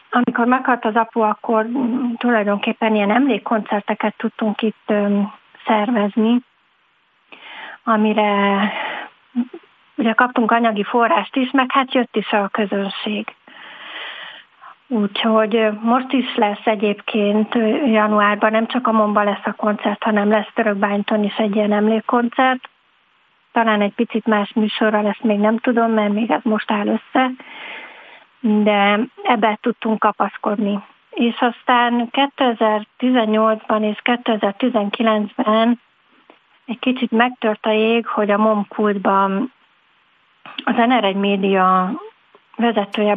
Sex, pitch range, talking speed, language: female, 210-240 Hz, 110 wpm, Hungarian